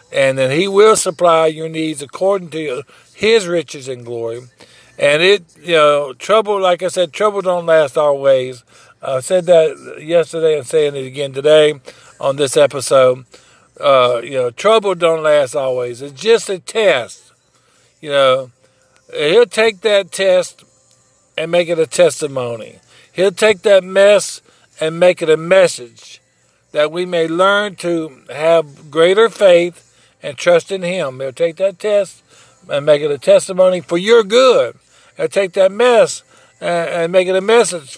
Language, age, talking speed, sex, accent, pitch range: English, 50-69, 160 wpm, male, American, 150-200 Hz